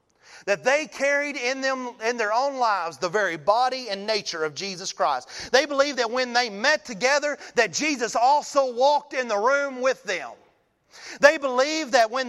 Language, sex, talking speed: English, male, 180 wpm